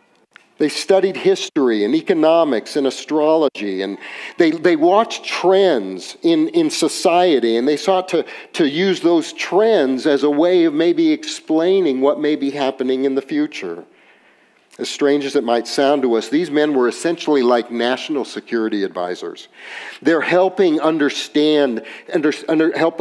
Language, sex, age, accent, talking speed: English, male, 50-69, American, 150 wpm